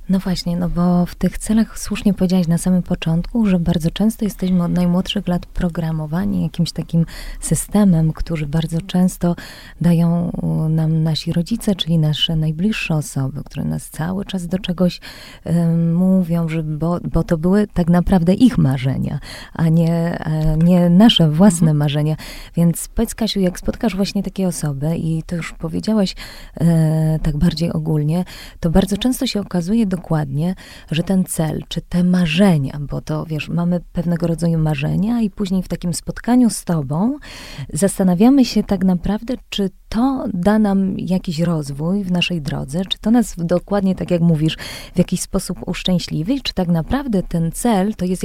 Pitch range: 165-195 Hz